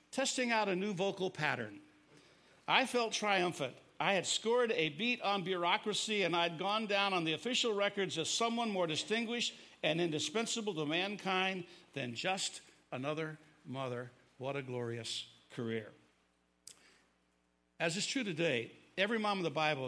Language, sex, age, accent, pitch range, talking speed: English, male, 60-79, American, 160-210 Hz, 150 wpm